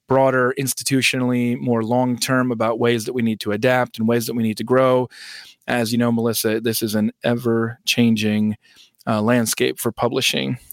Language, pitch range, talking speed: English, 115-140 Hz, 160 wpm